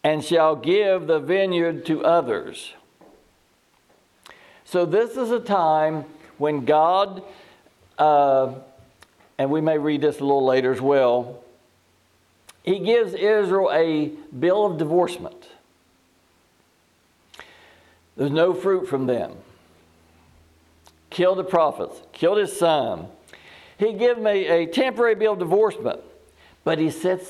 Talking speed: 120 wpm